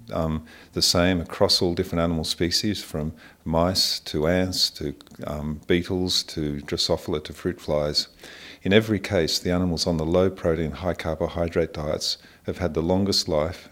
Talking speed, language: 155 wpm, English